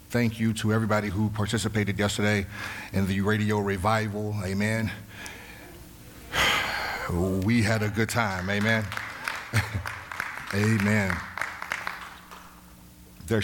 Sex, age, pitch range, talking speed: male, 60-79, 90-105 Hz, 90 wpm